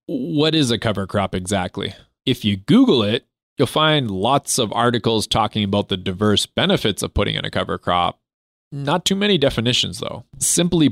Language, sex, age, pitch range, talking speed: English, male, 20-39, 100-125 Hz, 175 wpm